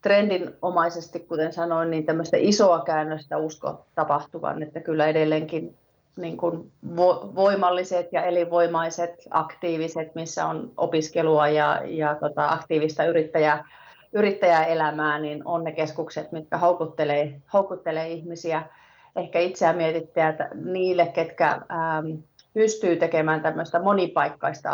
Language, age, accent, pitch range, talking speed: Finnish, 30-49, native, 155-170 Hz, 105 wpm